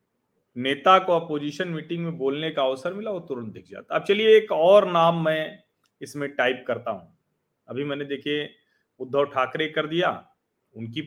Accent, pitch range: native, 135-170 Hz